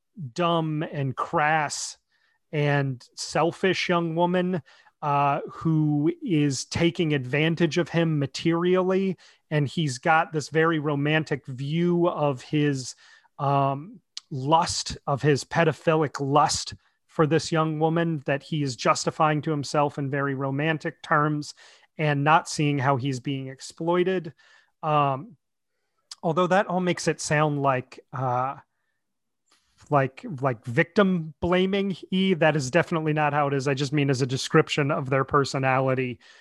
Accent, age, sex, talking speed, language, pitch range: American, 30-49, male, 130 wpm, English, 140-165 Hz